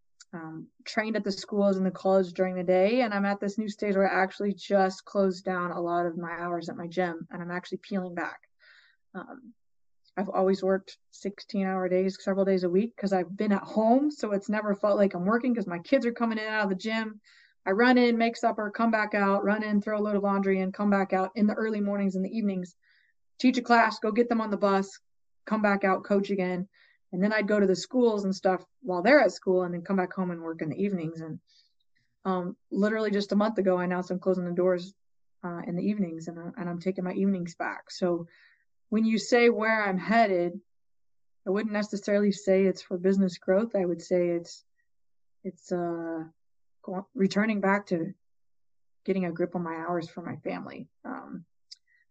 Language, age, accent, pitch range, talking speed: English, 20-39, American, 180-215 Hz, 220 wpm